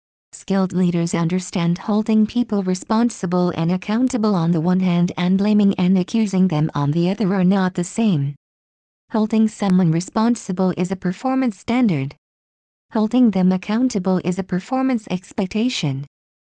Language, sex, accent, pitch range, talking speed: English, female, American, 170-205 Hz, 140 wpm